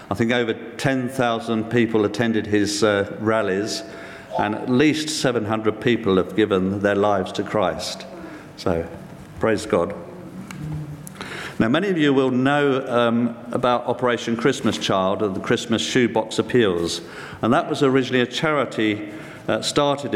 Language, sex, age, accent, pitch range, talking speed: English, male, 50-69, British, 110-125 Hz, 140 wpm